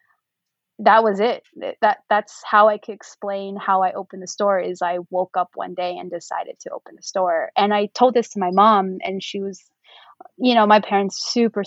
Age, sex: 20-39, female